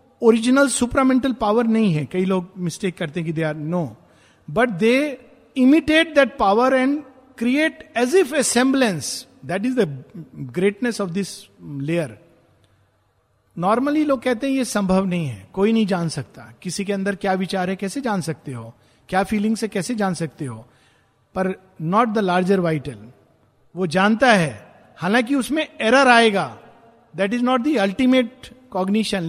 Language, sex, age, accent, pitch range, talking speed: Hindi, male, 50-69, native, 160-230 Hz, 160 wpm